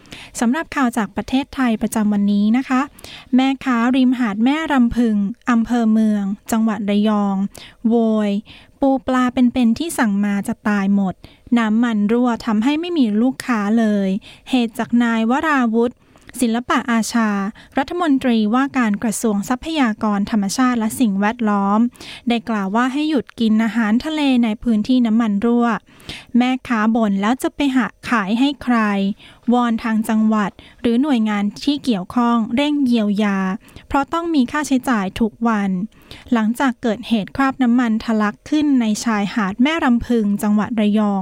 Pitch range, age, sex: 210-255 Hz, 10-29, female